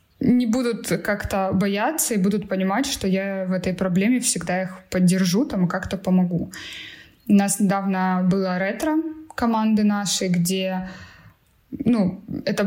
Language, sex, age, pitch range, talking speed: Russian, female, 20-39, 185-225 Hz, 130 wpm